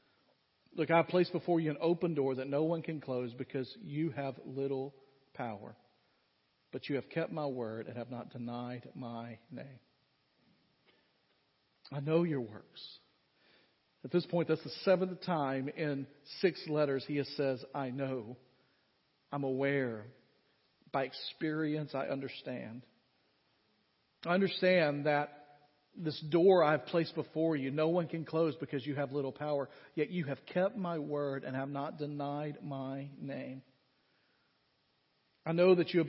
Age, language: 40-59, English